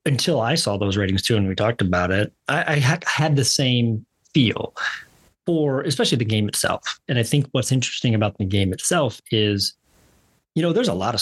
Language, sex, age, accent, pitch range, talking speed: English, male, 30-49, American, 100-120 Hz, 205 wpm